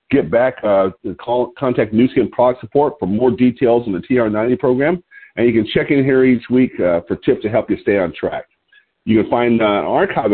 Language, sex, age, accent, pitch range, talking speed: English, male, 50-69, American, 105-150 Hz, 230 wpm